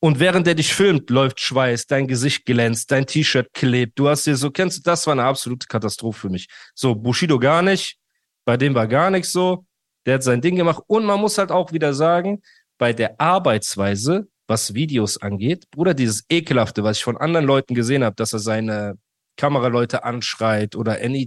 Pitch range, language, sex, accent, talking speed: 115-165 Hz, German, male, German, 200 wpm